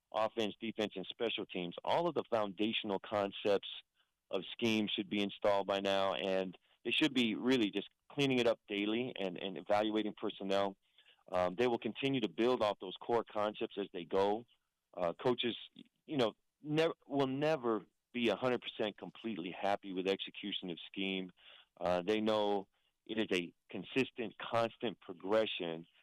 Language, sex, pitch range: English, male, 95-120 Hz